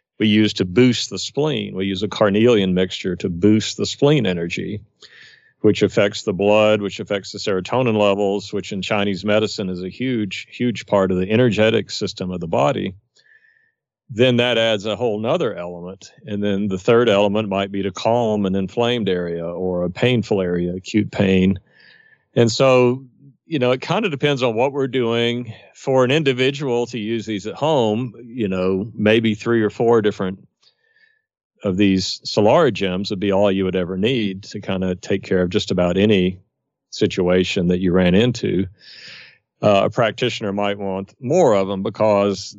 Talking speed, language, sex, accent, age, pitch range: 180 wpm, English, male, American, 40-59, 95-120 Hz